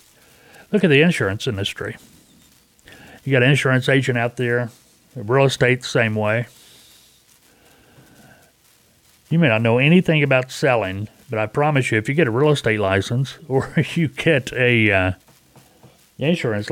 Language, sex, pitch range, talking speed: English, male, 110-140 Hz, 145 wpm